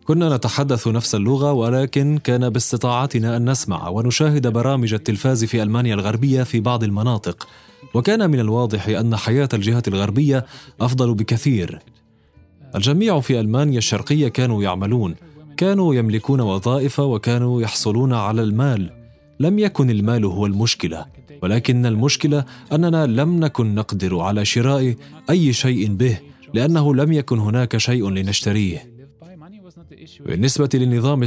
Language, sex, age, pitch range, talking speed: Arabic, male, 30-49, 110-140 Hz, 125 wpm